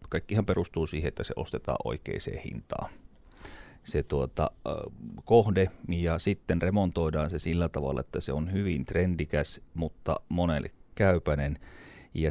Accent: native